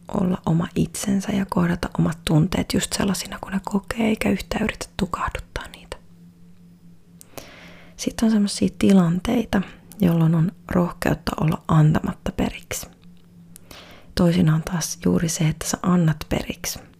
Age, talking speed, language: 30-49, 125 wpm, Finnish